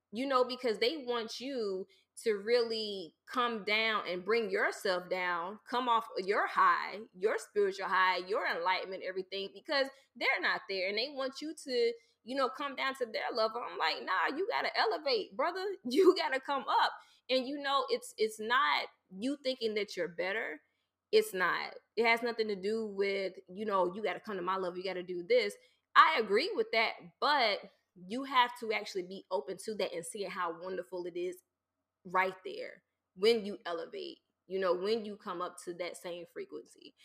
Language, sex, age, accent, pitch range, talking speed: English, female, 20-39, American, 185-270 Hz, 195 wpm